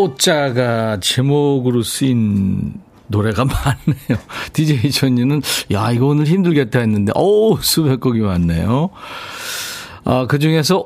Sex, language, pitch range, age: male, Korean, 110-165 Hz, 40-59